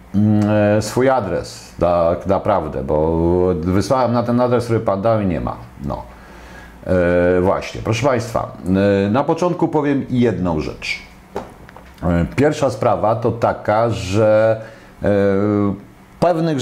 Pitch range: 90-125 Hz